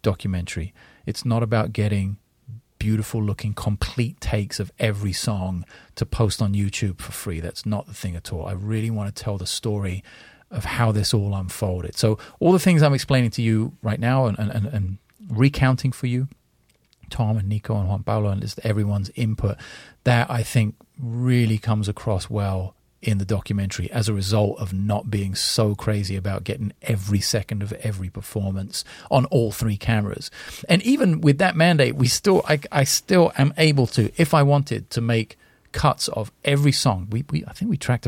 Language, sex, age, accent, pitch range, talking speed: English, male, 30-49, British, 100-125 Hz, 185 wpm